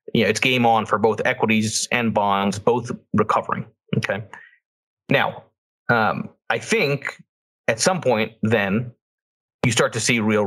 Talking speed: 150 wpm